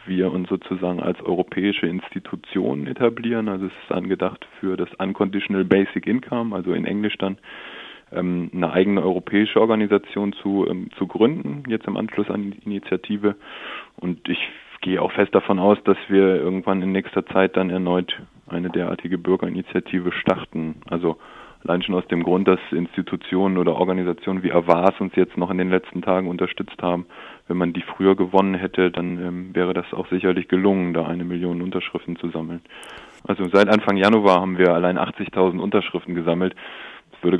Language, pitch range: German, 90-95 Hz